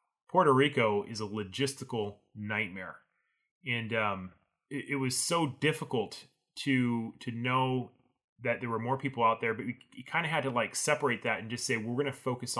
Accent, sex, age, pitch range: American, male, 30-49, 115-140 Hz